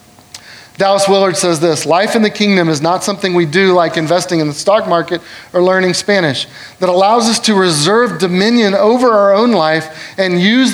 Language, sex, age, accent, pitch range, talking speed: English, male, 30-49, American, 160-205 Hz, 190 wpm